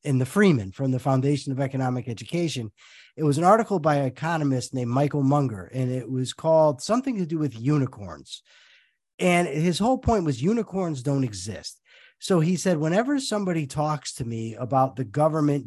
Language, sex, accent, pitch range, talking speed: English, male, American, 130-170 Hz, 180 wpm